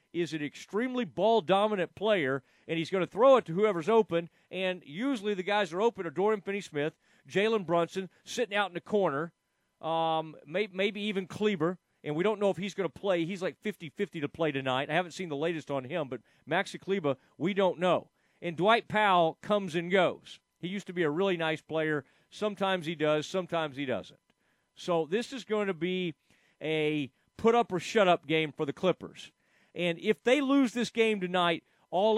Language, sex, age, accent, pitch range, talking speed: English, male, 40-59, American, 160-200 Hz, 195 wpm